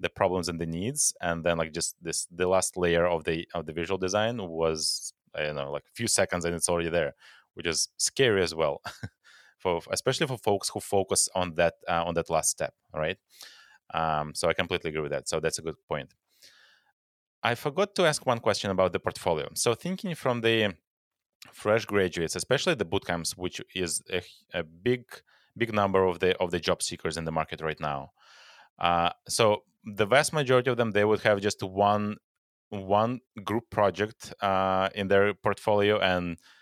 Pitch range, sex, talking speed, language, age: 85-105 Hz, male, 190 wpm, English, 30-49